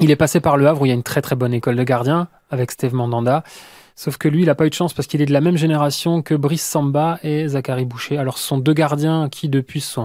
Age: 20-39